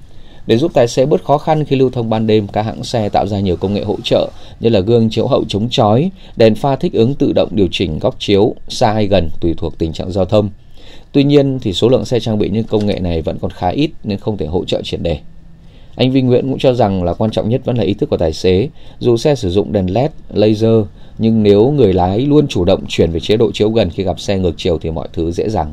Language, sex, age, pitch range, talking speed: Vietnamese, male, 20-39, 90-120 Hz, 275 wpm